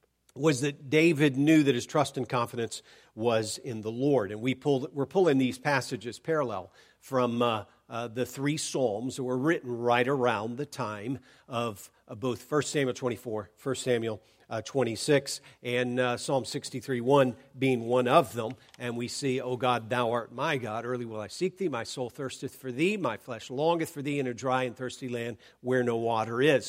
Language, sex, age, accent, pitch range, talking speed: English, male, 50-69, American, 120-140 Hz, 195 wpm